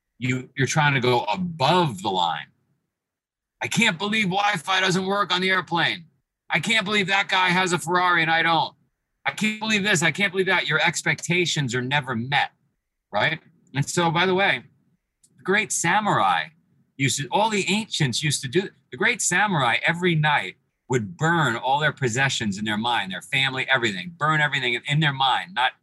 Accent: American